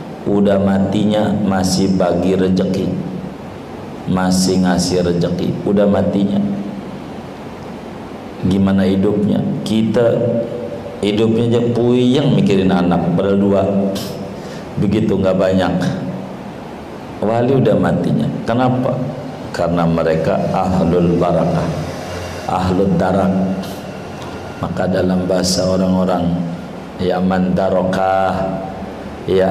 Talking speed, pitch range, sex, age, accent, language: 80 wpm, 80-100 Hz, male, 50-69, native, Indonesian